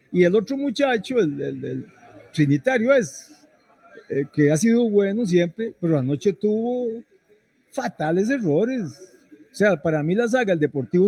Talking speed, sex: 150 wpm, male